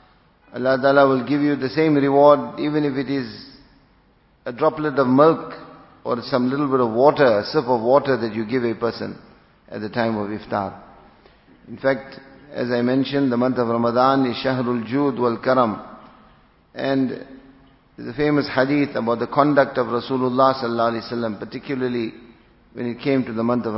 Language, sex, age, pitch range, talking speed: English, male, 50-69, 120-135 Hz, 180 wpm